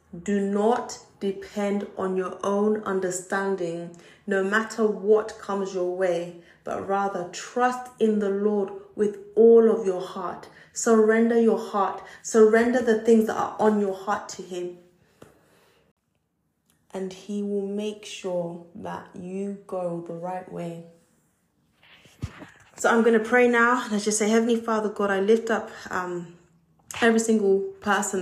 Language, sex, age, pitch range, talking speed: English, female, 20-39, 190-220 Hz, 140 wpm